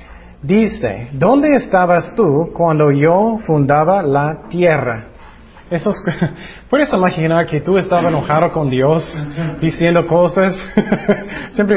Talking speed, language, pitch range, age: 100 wpm, Spanish, 145-195 Hz, 30-49